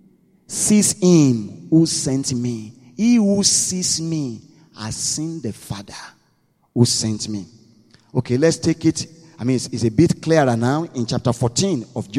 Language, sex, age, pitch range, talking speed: English, male, 40-59, 115-160 Hz, 160 wpm